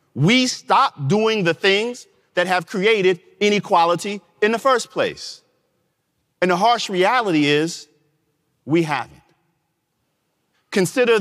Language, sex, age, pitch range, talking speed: Arabic, male, 40-59, 145-185 Hz, 110 wpm